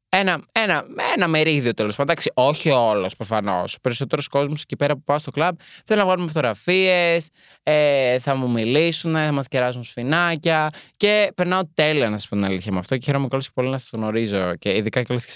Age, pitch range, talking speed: 20-39, 115-155 Hz, 205 wpm